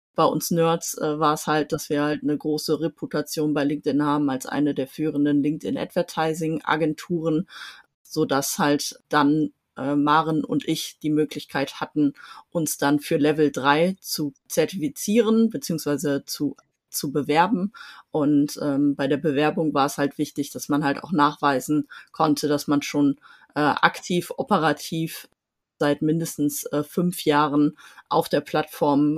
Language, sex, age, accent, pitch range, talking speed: German, female, 30-49, German, 145-160 Hz, 150 wpm